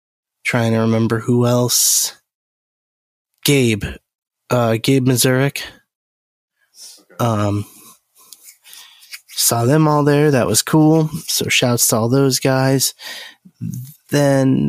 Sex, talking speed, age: male, 100 wpm, 20-39